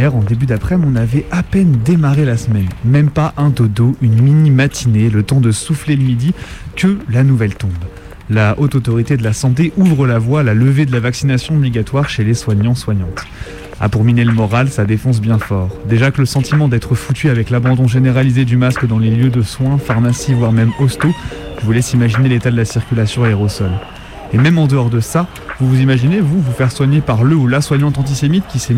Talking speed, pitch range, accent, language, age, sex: 220 wpm, 115-140 Hz, French, French, 20-39, male